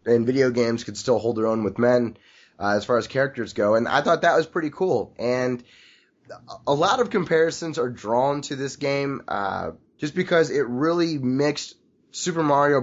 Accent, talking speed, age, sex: American, 190 wpm, 20-39, male